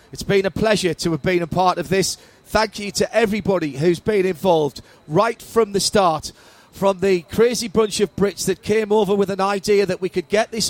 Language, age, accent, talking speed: English, 40-59, British, 220 wpm